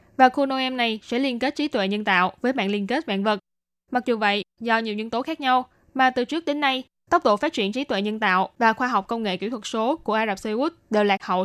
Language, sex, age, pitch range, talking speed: Vietnamese, female, 10-29, 210-260 Hz, 280 wpm